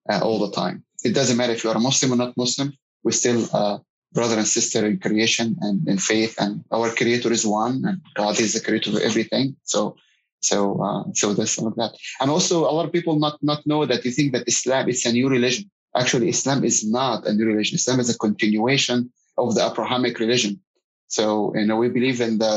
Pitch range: 110-130 Hz